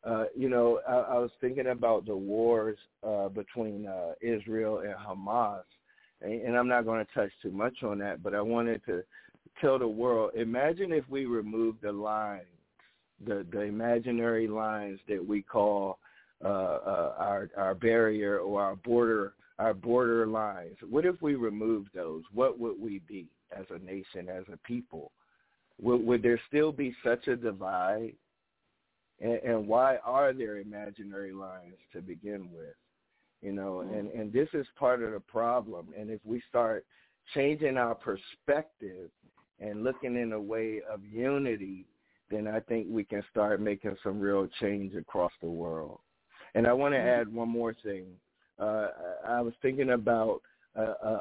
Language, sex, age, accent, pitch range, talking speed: English, male, 50-69, American, 100-120 Hz, 165 wpm